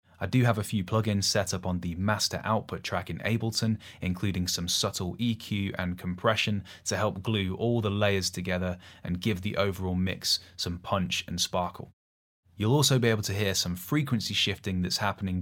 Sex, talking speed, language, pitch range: male, 185 wpm, English, 90-110 Hz